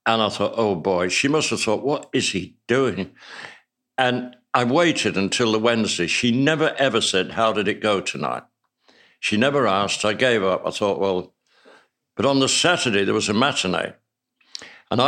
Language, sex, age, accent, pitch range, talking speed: English, male, 60-79, British, 105-140 Hz, 185 wpm